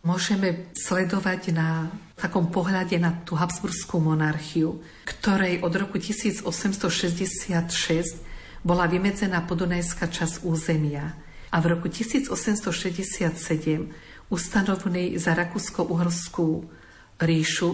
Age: 50-69